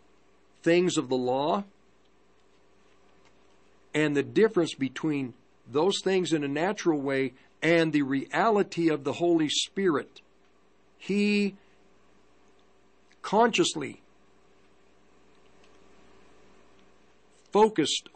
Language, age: English, 50-69